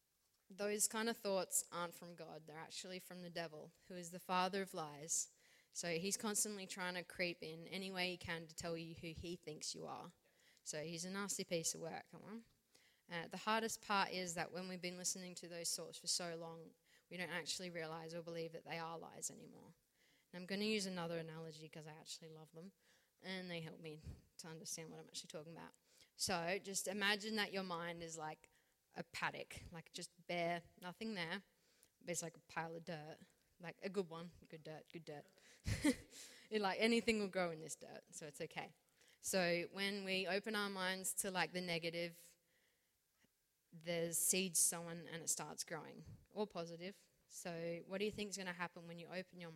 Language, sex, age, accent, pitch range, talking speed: English, female, 20-39, Australian, 165-190 Hz, 200 wpm